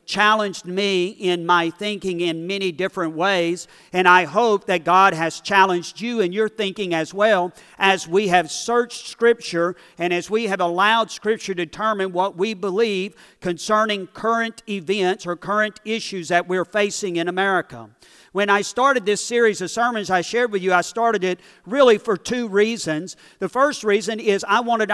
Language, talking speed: English, 175 wpm